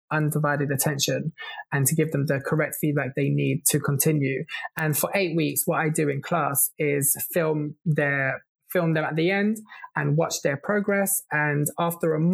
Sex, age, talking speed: male, 20-39, 175 wpm